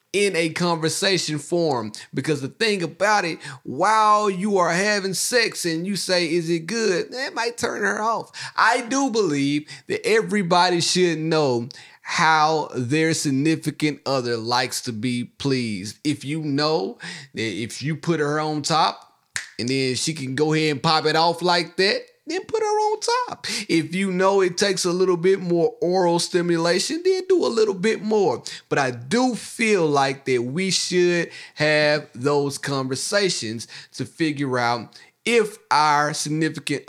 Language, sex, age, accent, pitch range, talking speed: English, male, 30-49, American, 150-210 Hz, 165 wpm